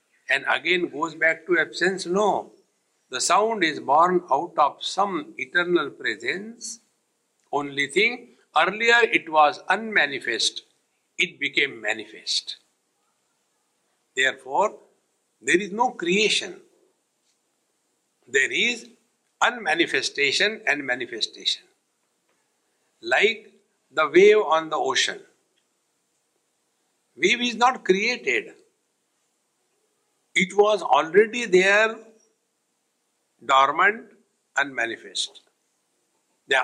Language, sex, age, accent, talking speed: English, male, 60-79, Indian, 85 wpm